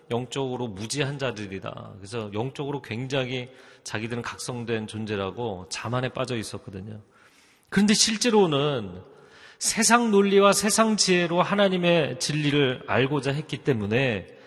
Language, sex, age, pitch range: Korean, male, 40-59, 115-170 Hz